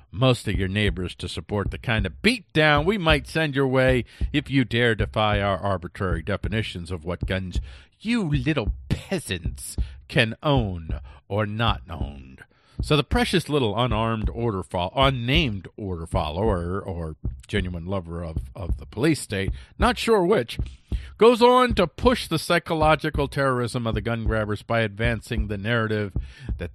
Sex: male